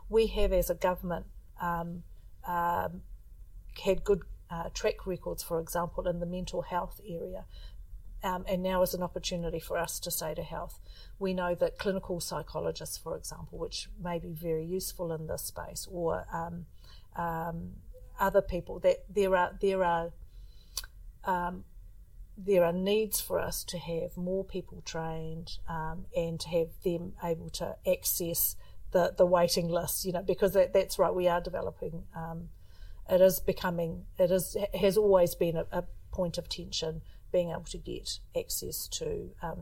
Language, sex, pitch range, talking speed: English, female, 165-190 Hz, 165 wpm